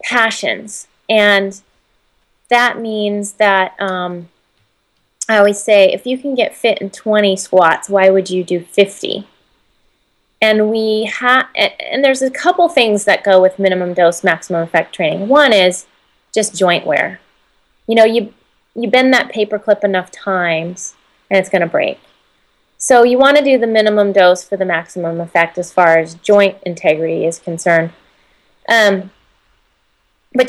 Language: English